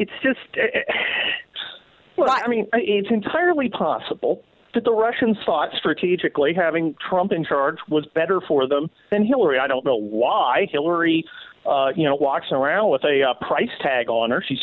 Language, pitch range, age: English, 160-240 Hz, 40-59